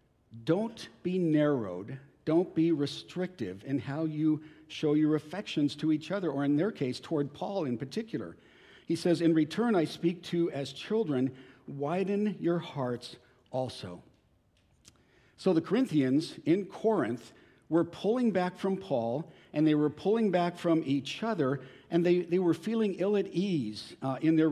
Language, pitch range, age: English, 135-170 Hz, 50-69